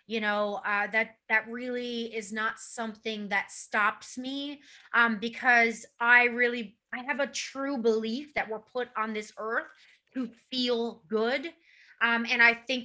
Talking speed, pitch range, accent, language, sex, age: 160 wpm, 220-255 Hz, American, English, female, 30-49